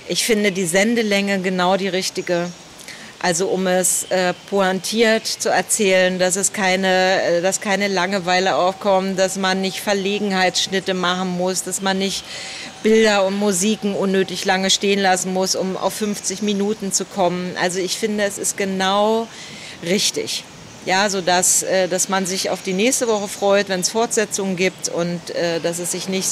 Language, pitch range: German, 170-195 Hz